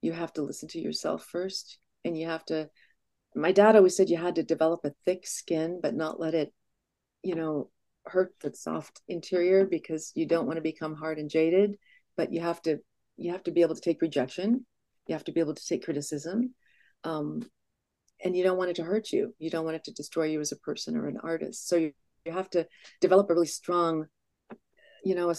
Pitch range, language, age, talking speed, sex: 160-185 Hz, English, 40-59, 225 wpm, female